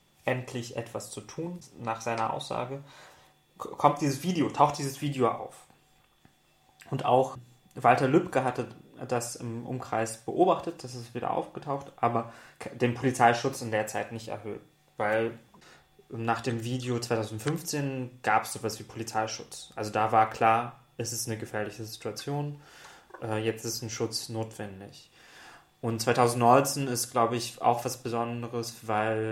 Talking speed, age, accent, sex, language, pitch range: 140 wpm, 20-39, German, male, German, 115-135 Hz